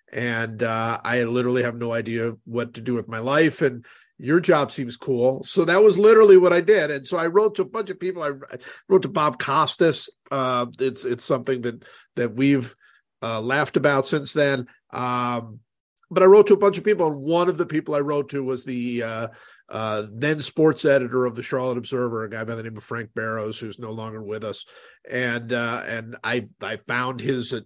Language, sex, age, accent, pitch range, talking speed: English, male, 50-69, American, 120-160 Hz, 215 wpm